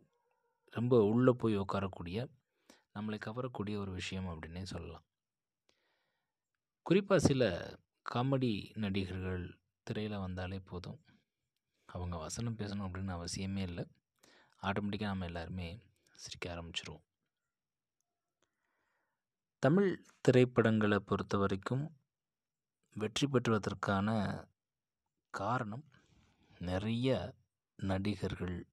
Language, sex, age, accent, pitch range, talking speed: Tamil, male, 20-39, native, 95-120 Hz, 75 wpm